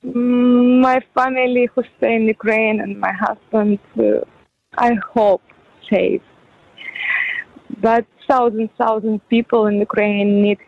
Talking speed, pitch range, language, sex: 120 wpm, 220-280 Hz, English, female